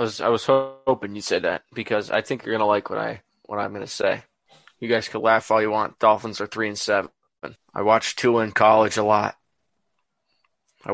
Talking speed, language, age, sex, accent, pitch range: 220 wpm, English, 20-39, male, American, 110-120 Hz